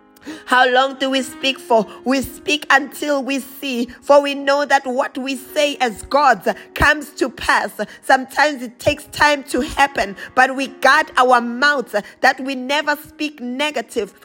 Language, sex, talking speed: English, female, 165 wpm